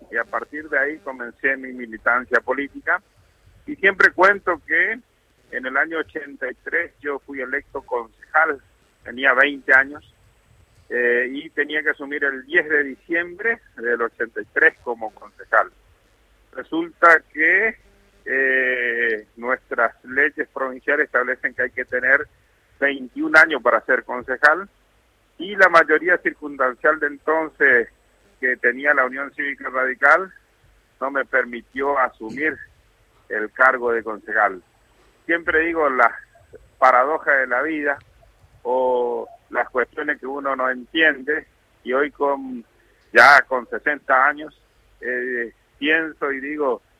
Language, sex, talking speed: Spanish, male, 125 wpm